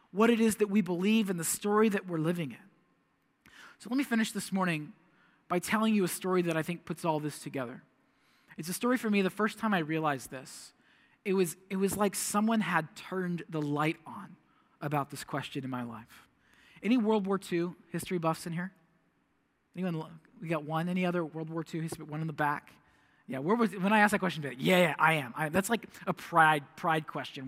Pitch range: 160-205 Hz